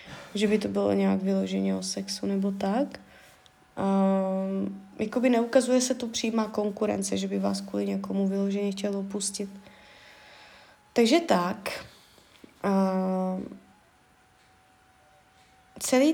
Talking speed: 110 wpm